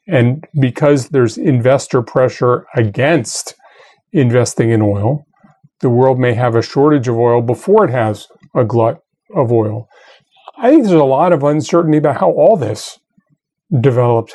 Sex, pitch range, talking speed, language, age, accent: male, 120-160 Hz, 150 wpm, English, 40-59, American